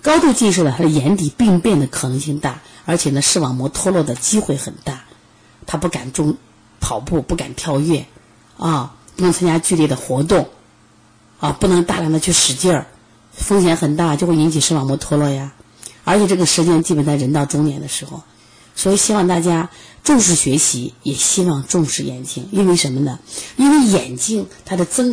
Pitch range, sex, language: 140-205 Hz, female, Chinese